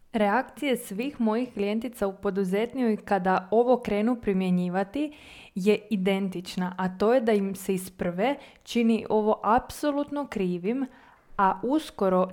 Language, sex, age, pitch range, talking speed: Croatian, female, 20-39, 195-240 Hz, 120 wpm